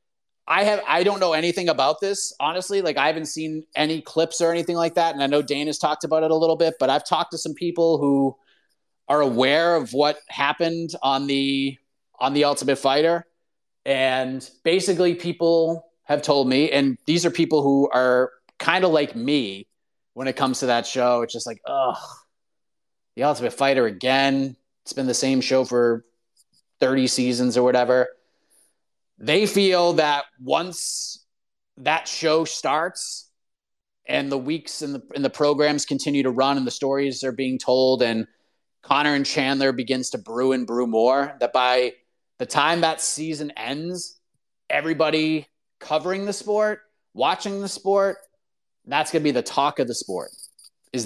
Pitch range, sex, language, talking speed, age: 130-165 Hz, male, English, 170 wpm, 30-49